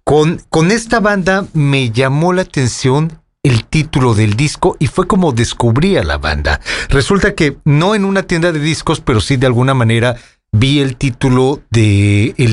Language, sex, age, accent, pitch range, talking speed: English, male, 40-59, Mexican, 115-155 Hz, 175 wpm